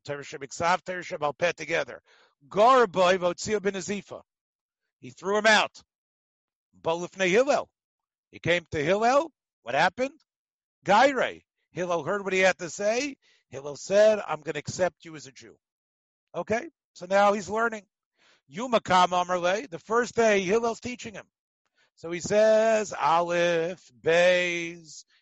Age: 50-69